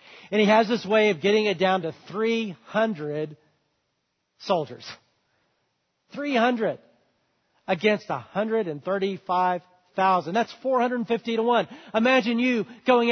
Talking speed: 135 wpm